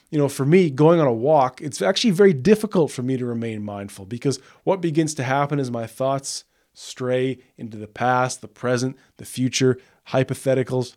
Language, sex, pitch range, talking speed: English, male, 120-155 Hz, 185 wpm